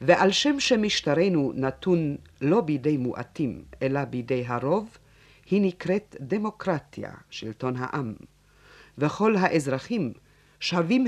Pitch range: 135-195 Hz